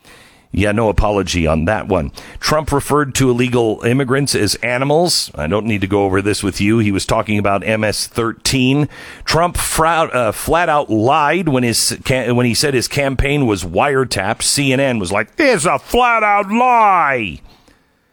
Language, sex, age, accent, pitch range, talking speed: English, male, 50-69, American, 95-135 Hz, 160 wpm